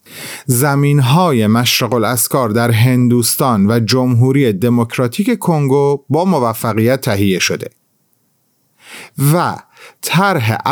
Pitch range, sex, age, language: 115-160 Hz, male, 40-59, Persian